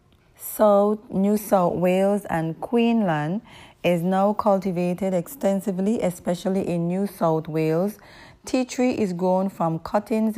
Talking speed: 120 wpm